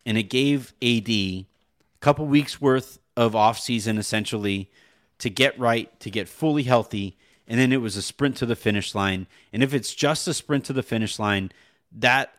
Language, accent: English, American